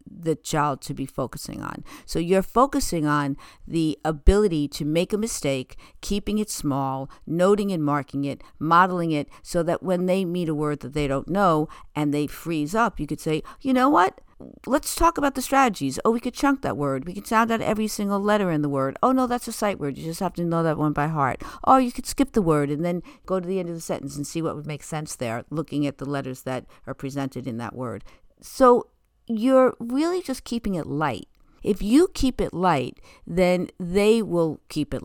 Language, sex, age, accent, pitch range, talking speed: English, female, 50-69, American, 140-185 Hz, 225 wpm